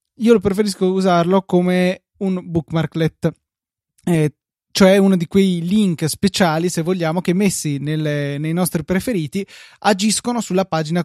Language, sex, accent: Italian, male, native